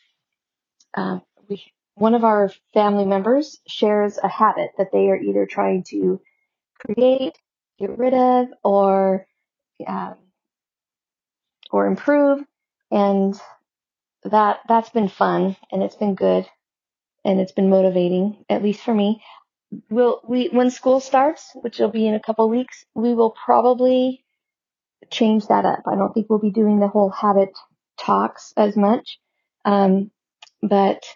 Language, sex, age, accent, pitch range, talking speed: English, female, 40-59, American, 185-220 Hz, 140 wpm